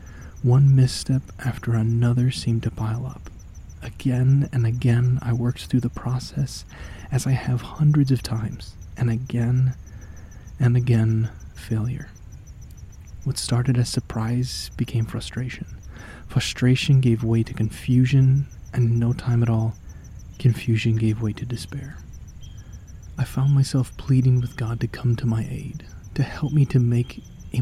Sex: male